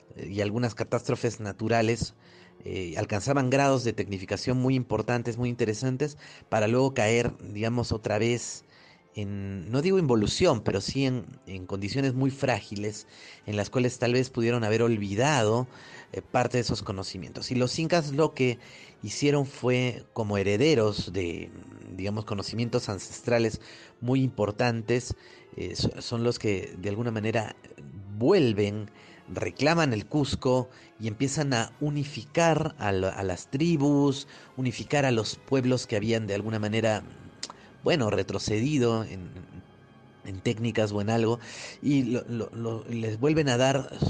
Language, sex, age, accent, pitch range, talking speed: Spanish, male, 40-59, Mexican, 105-135 Hz, 135 wpm